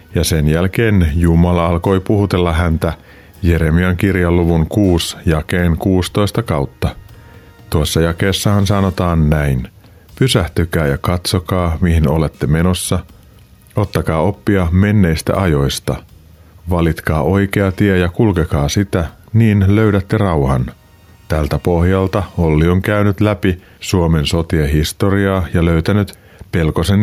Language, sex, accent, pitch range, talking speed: Finnish, male, native, 85-100 Hz, 105 wpm